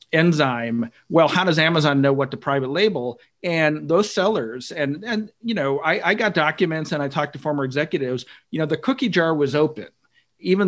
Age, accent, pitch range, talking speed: 40-59, American, 140-165 Hz, 195 wpm